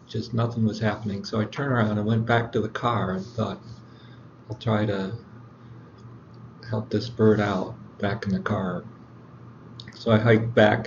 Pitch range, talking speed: 105-120 Hz, 170 wpm